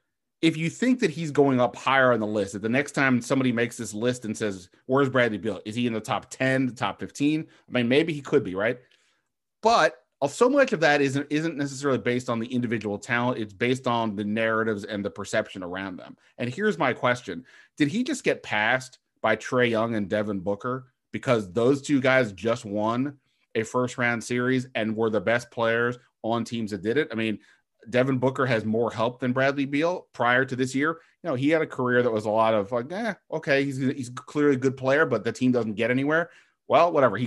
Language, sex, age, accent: English, male, 30-49, American